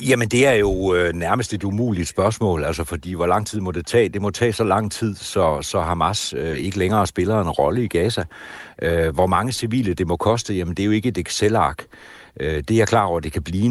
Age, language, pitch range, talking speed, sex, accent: 60-79, Danish, 85-110 Hz, 250 wpm, male, native